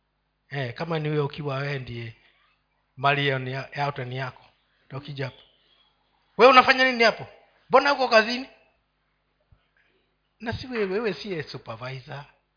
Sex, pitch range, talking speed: male, 125-175 Hz, 125 wpm